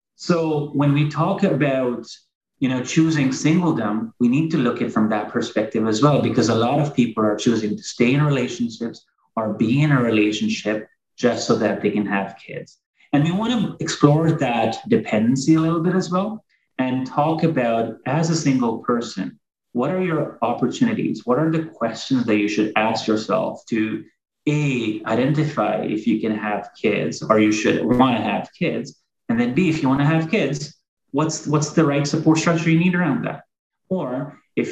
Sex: male